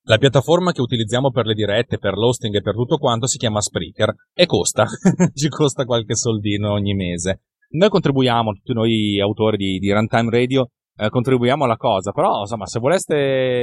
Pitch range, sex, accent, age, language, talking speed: 110-140 Hz, male, native, 30-49, Italian, 180 wpm